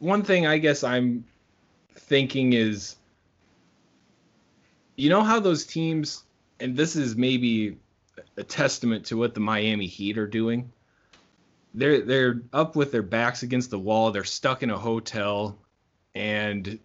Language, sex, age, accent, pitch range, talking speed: English, male, 20-39, American, 100-125 Hz, 145 wpm